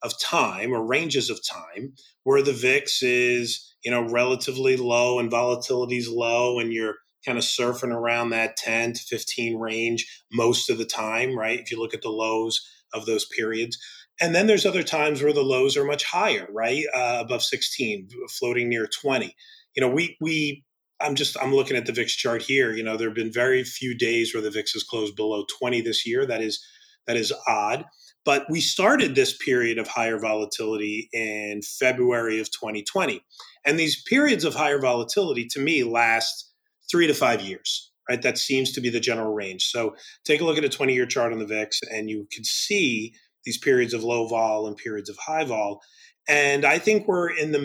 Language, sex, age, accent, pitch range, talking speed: English, male, 30-49, American, 115-145 Hz, 205 wpm